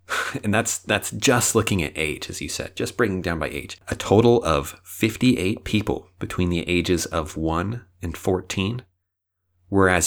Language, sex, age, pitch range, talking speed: English, male, 30-49, 85-105 Hz, 165 wpm